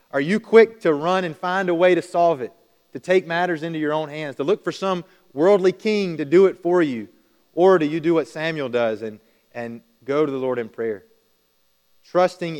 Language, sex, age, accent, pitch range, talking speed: English, male, 30-49, American, 115-155 Hz, 220 wpm